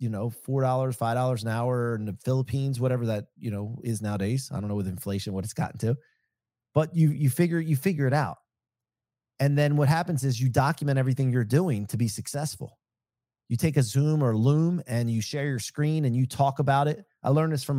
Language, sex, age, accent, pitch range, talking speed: English, male, 30-49, American, 115-145 Hz, 225 wpm